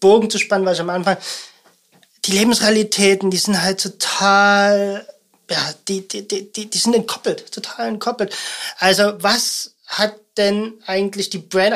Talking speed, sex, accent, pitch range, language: 150 wpm, male, German, 185-215 Hz, German